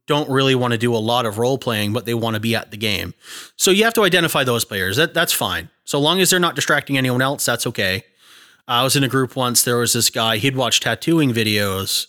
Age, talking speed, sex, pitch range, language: 30-49, 255 wpm, male, 120-170 Hz, English